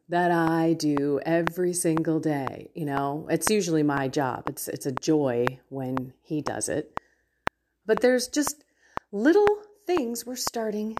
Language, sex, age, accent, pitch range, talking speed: English, female, 30-49, American, 150-210 Hz, 145 wpm